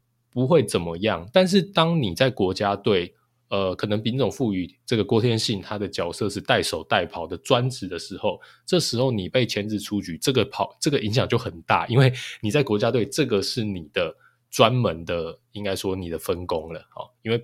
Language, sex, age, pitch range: Chinese, male, 20-39, 95-120 Hz